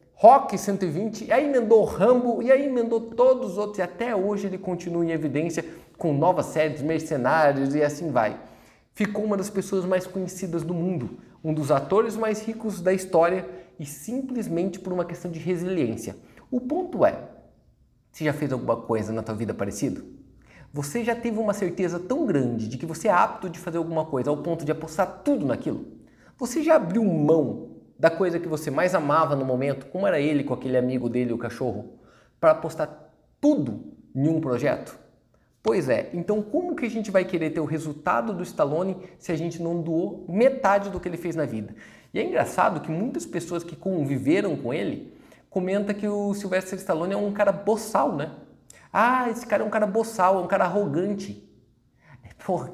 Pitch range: 155-205 Hz